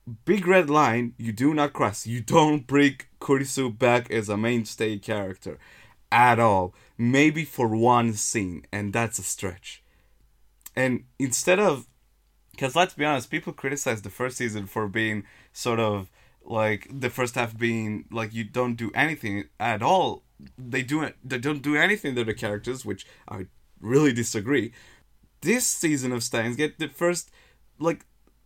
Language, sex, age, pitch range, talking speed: English, male, 20-39, 115-170 Hz, 155 wpm